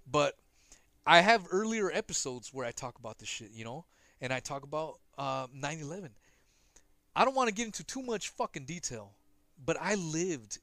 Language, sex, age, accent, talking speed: English, male, 30-49, American, 180 wpm